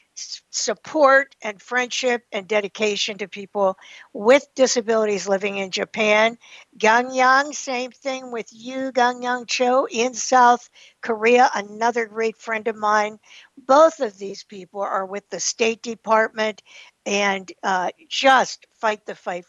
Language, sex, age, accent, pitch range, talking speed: English, female, 60-79, American, 210-255 Hz, 135 wpm